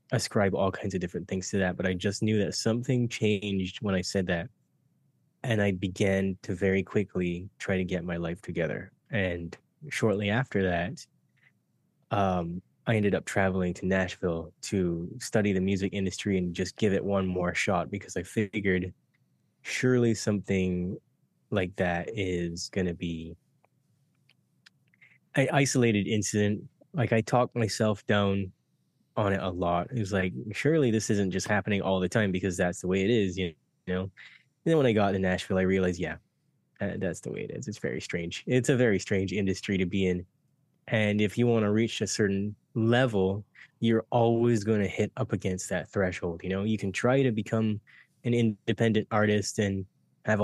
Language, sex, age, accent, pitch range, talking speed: English, male, 20-39, American, 95-110 Hz, 180 wpm